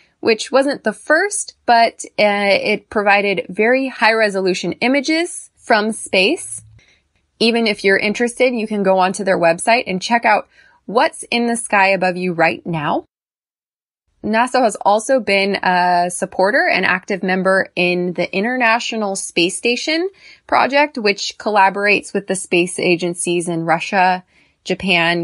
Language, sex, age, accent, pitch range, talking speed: English, female, 20-39, American, 185-220 Hz, 140 wpm